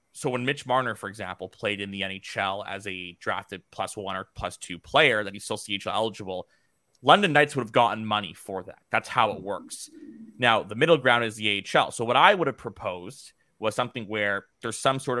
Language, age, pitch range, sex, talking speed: English, 20-39, 100-120 Hz, male, 215 wpm